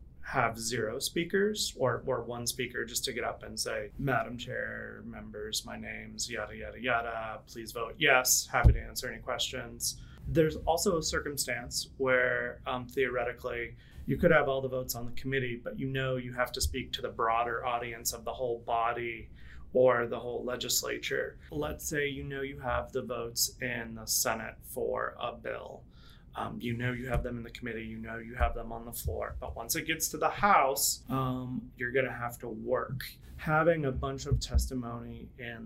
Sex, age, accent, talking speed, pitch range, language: male, 30-49, American, 195 wpm, 115-130 Hz, English